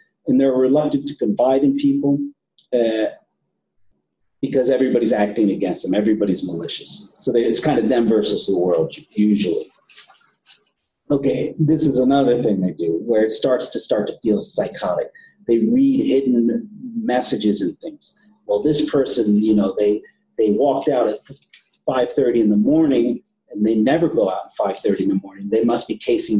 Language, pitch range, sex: English, 105-180 Hz, male